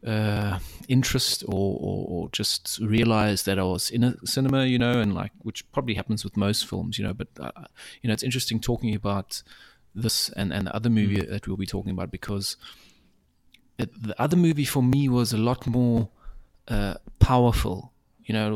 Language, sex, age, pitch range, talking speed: English, male, 30-49, 105-120 Hz, 195 wpm